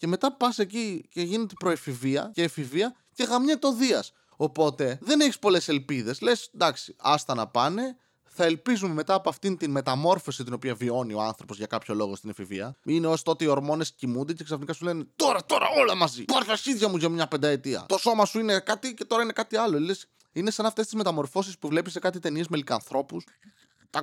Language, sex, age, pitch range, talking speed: Greek, male, 20-39, 125-190 Hz, 205 wpm